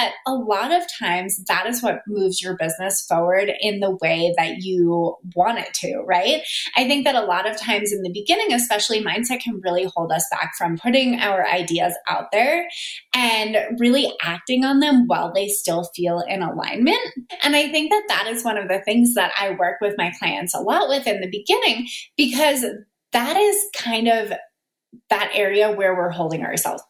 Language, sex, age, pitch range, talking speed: English, female, 20-39, 190-255 Hz, 195 wpm